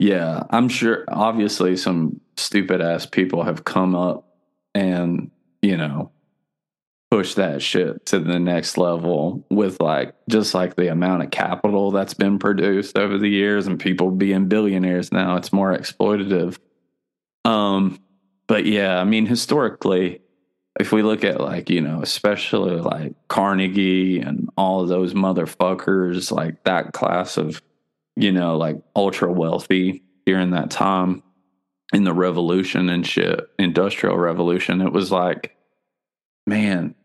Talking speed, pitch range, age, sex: 140 wpm, 90-105 Hz, 20-39, male